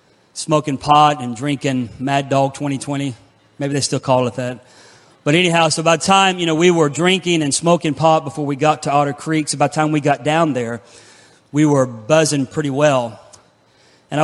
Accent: American